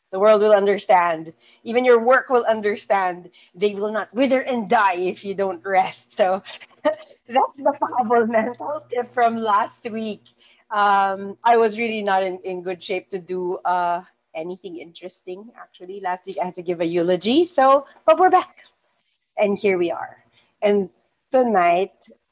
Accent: Filipino